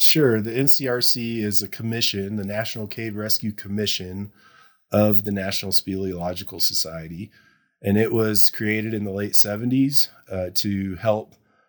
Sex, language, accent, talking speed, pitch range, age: male, English, American, 135 wpm, 100-110 Hz, 30-49